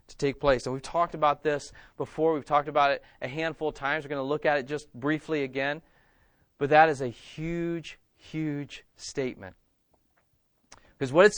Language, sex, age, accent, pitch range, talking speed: English, male, 30-49, American, 115-155 Hz, 190 wpm